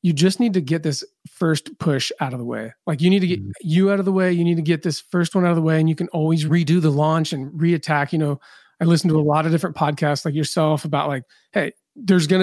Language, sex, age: English, male, 30-49